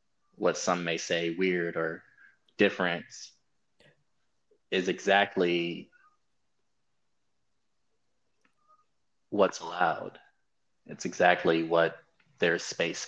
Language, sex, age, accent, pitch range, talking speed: English, male, 20-39, American, 85-110 Hz, 75 wpm